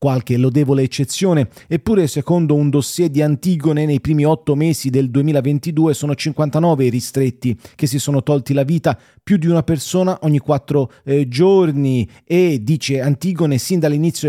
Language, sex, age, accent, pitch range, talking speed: Italian, male, 30-49, native, 130-160 Hz, 155 wpm